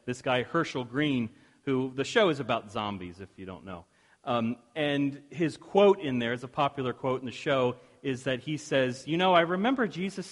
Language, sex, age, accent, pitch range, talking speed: English, male, 40-59, American, 135-180 Hz, 210 wpm